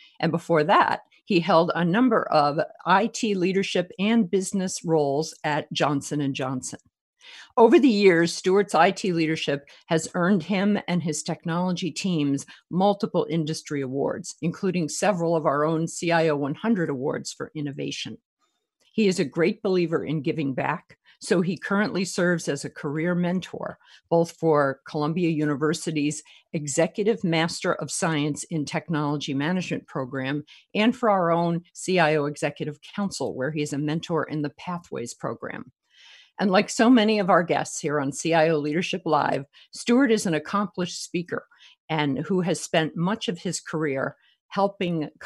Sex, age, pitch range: female, 50-69, 155-195 Hz